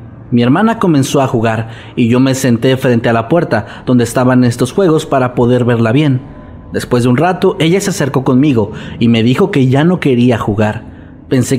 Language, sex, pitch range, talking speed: Spanish, male, 115-150 Hz, 195 wpm